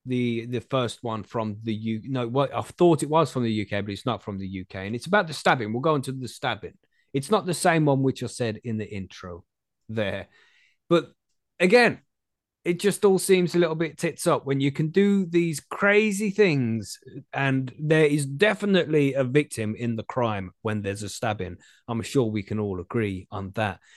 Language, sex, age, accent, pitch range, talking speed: English, male, 20-39, British, 115-180 Hz, 210 wpm